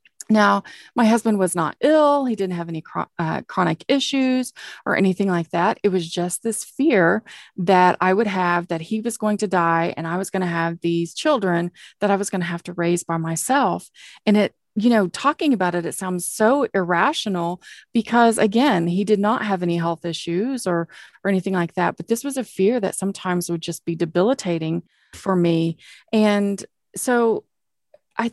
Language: English